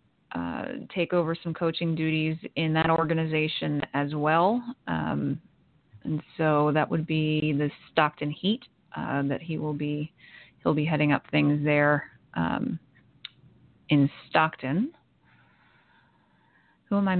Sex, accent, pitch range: female, American, 150-180 Hz